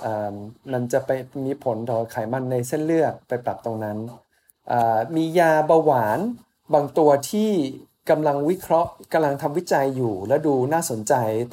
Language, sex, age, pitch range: Thai, male, 20-39, 115-155 Hz